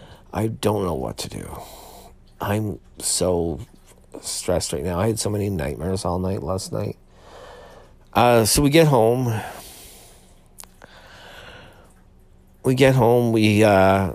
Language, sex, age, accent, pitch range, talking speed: English, male, 50-69, American, 85-110 Hz, 125 wpm